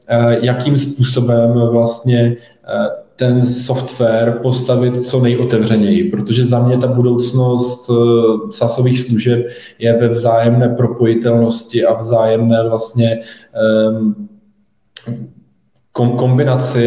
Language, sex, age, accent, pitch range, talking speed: Czech, male, 20-39, native, 115-125 Hz, 80 wpm